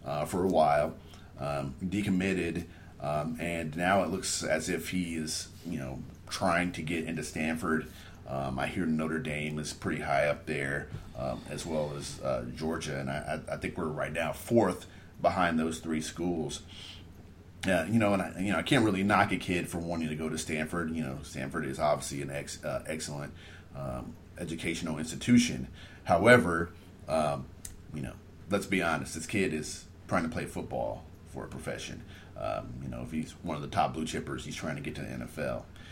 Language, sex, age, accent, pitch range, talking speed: English, male, 40-59, American, 75-95 Hz, 195 wpm